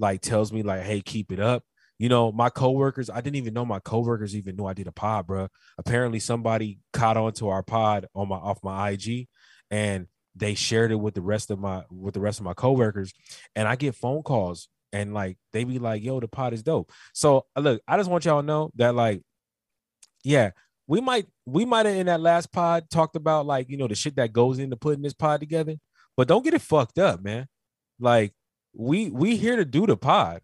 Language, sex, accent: English, male, American